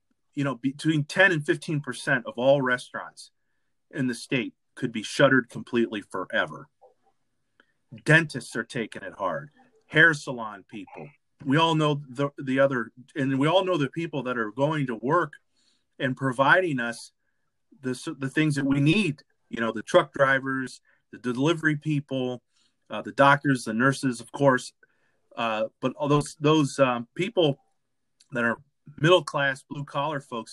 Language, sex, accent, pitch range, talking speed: English, male, American, 125-155 Hz, 155 wpm